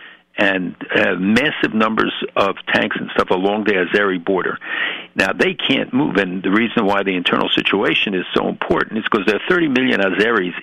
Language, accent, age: English, American, 60-79